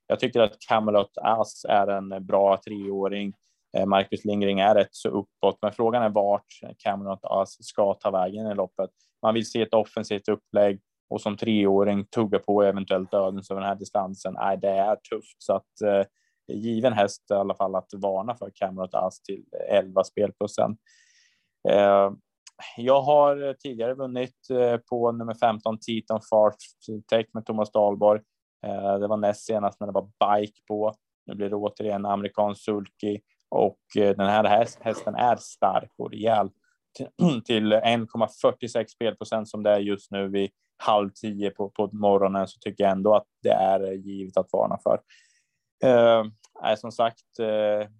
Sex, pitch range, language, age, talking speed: male, 100-110 Hz, Swedish, 20-39, 160 wpm